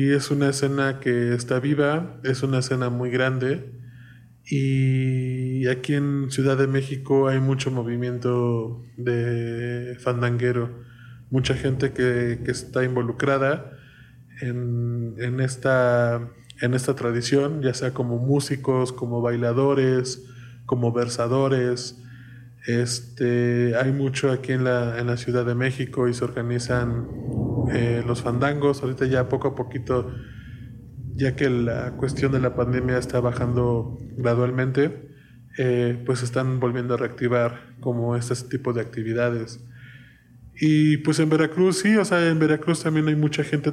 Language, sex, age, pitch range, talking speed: Spanish, male, 20-39, 120-135 Hz, 135 wpm